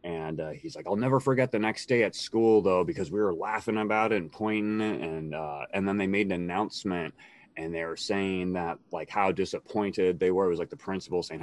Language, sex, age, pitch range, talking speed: English, male, 30-49, 85-110 Hz, 235 wpm